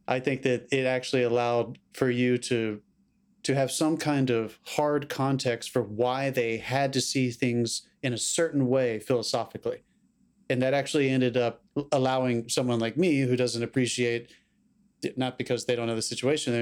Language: English